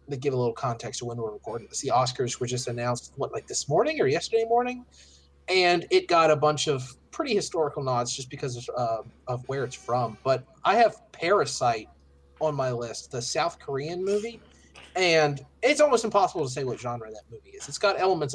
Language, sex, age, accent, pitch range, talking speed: English, male, 30-49, American, 125-170 Hz, 210 wpm